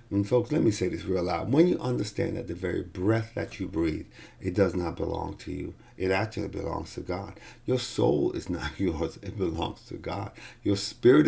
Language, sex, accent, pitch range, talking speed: English, male, American, 95-120 Hz, 215 wpm